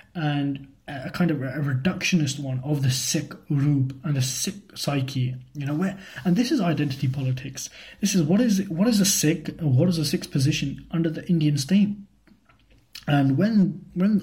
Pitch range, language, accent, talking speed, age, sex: 140-175 Hz, English, British, 185 wpm, 20-39, male